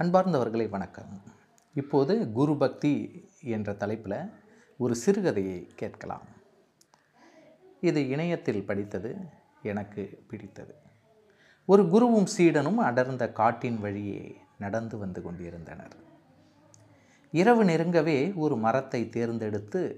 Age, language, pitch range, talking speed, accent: 30-49, Tamil, 105-165 Hz, 85 wpm, native